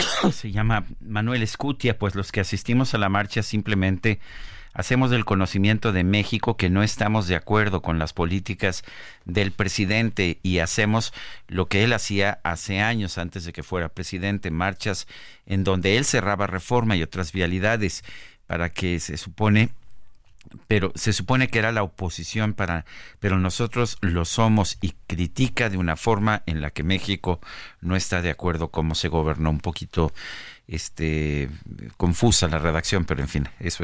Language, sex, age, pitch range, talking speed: Spanish, male, 50-69, 85-105 Hz, 160 wpm